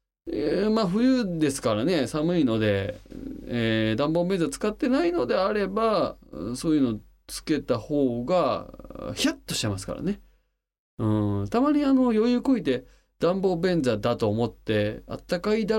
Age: 20-39